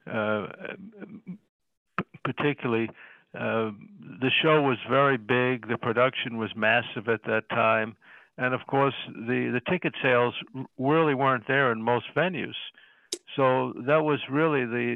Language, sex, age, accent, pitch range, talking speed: English, male, 60-79, American, 110-130 Hz, 130 wpm